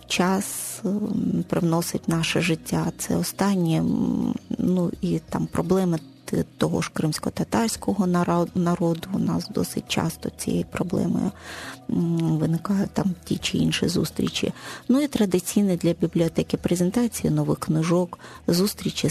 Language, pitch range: Ukrainian, 170-215 Hz